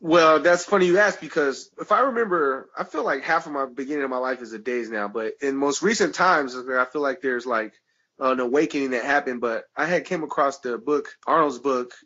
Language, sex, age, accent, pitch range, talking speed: English, male, 20-39, American, 130-170 Hz, 230 wpm